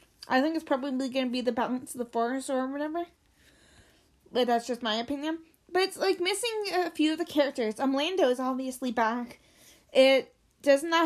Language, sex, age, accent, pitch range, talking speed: English, female, 20-39, American, 235-275 Hz, 195 wpm